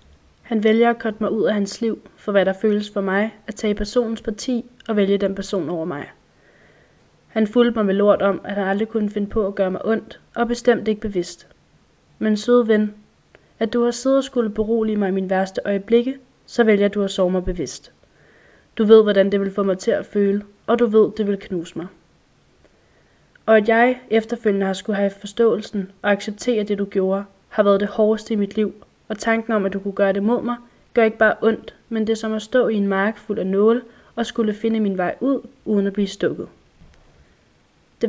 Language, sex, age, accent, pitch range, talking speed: Danish, female, 20-39, native, 195-230 Hz, 220 wpm